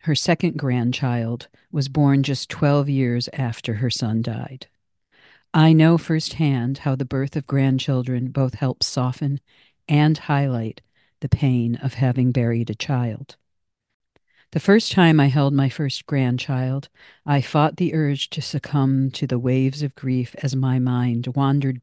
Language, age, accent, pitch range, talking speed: English, 50-69, American, 125-145 Hz, 150 wpm